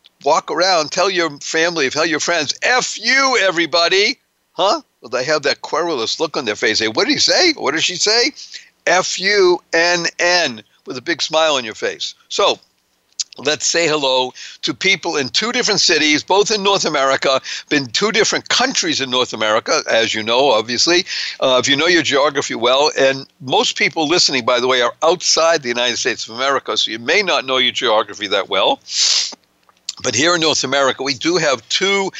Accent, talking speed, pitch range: American, 190 wpm, 130-185 Hz